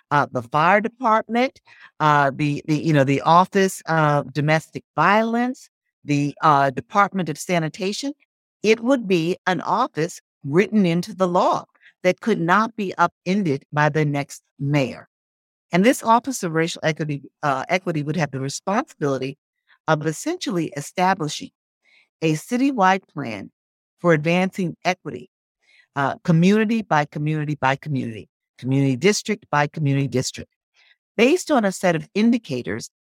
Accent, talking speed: American, 135 wpm